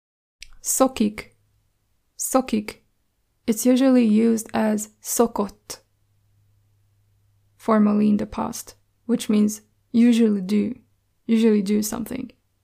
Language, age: Hungarian, 20-39